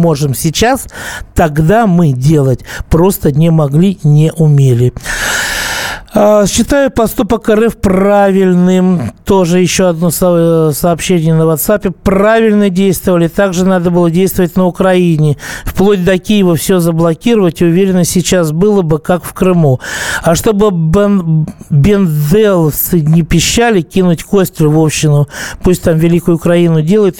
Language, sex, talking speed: Russian, male, 115 wpm